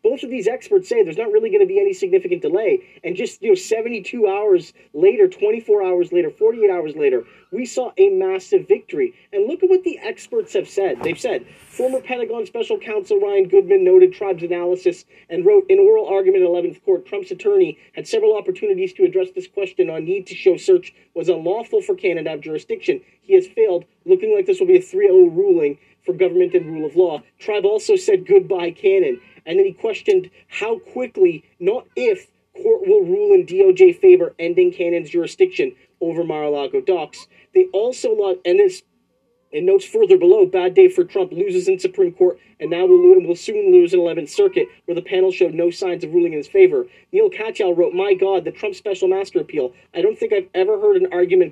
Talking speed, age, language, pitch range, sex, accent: 210 wpm, 40-59, English, 365-415 Hz, male, American